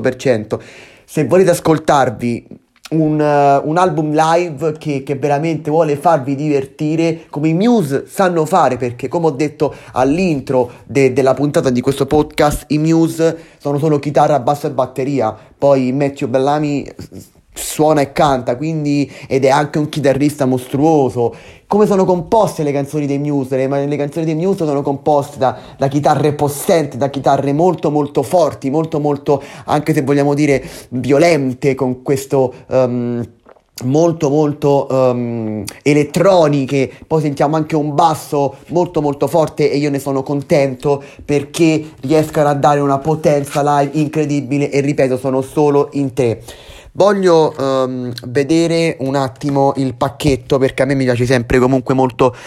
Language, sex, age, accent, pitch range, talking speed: Italian, male, 30-49, native, 130-155 Hz, 145 wpm